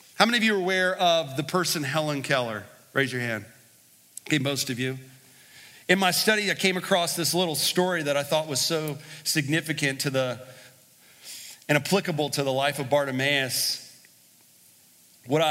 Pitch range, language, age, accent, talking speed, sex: 125-160 Hz, English, 40-59, American, 165 wpm, male